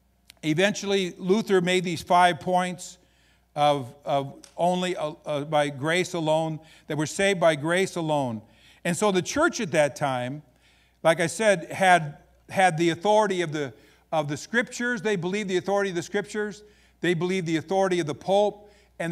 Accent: American